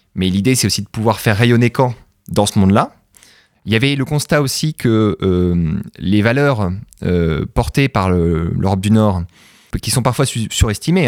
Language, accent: French, French